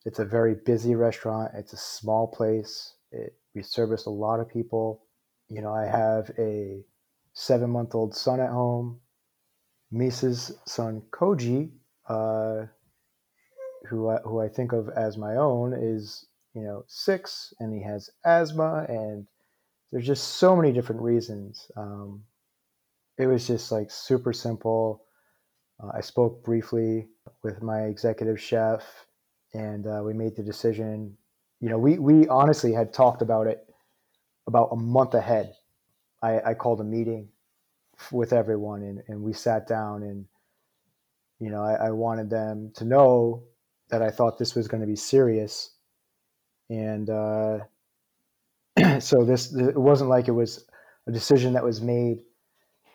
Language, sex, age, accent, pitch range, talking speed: English, male, 30-49, American, 110-125 Hz, 150 wpm